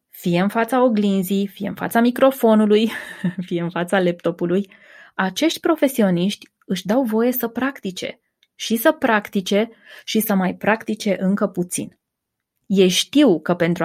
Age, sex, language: 20-39, female, Romanian